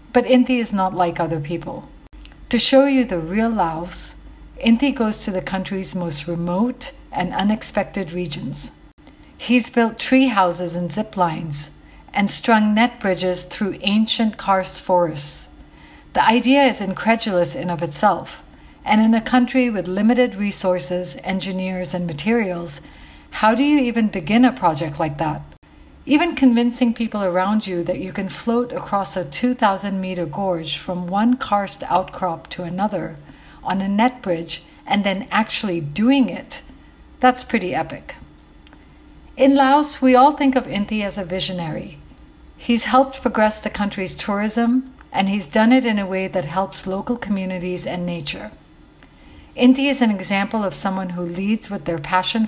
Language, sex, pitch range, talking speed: English, female, 180-235 Hz, 155 wpm